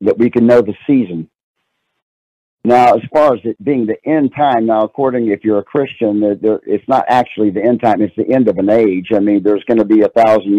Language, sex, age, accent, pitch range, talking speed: English, male, 50-69, American, 105-125 Hz, 240 wpm